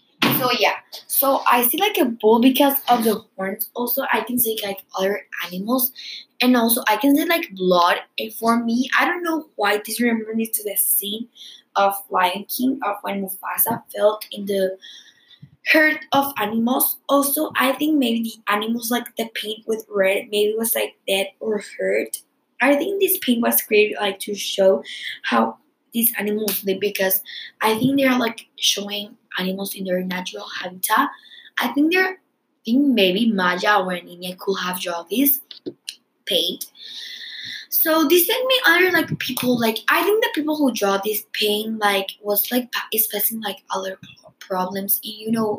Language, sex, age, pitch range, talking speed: English, female, 10-29, 195-270 Hz, 170 wpm